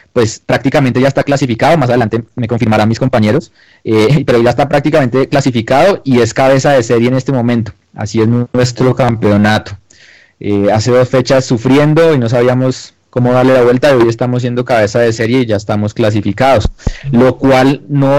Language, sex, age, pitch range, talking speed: Spanish, male, 20-39, 110-135 Hz, 180 wpm